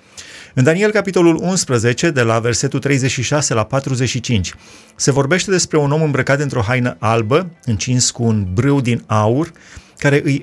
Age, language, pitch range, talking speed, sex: 30-49, Romanian, 115-150 Hz, 160 wpm, male